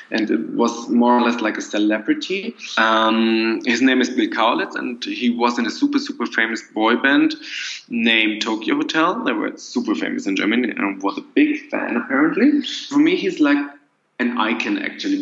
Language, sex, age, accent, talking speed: English, male, 20-39, German, 185 wpm